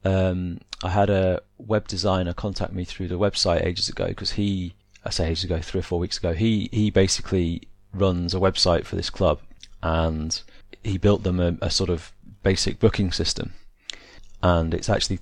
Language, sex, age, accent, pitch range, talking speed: English, male, 30-49, British, 90-105 Hz, 185 wpm